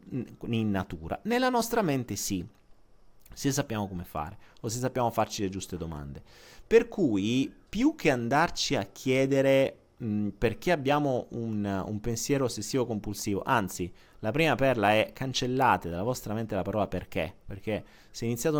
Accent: native